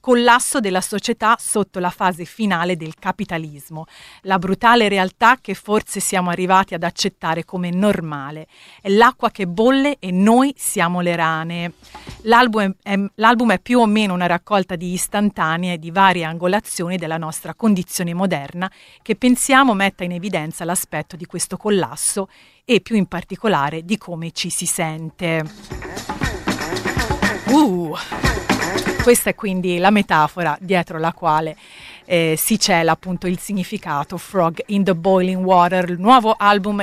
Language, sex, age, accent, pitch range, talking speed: Italian, female, 40-59, native, 170-205 Hz, 145 wpm